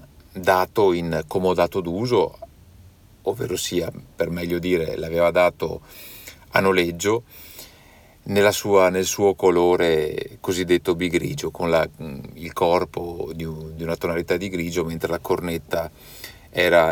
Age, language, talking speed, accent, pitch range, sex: 50-69, Italian, 105 wpm, native, 80-95 Hz, male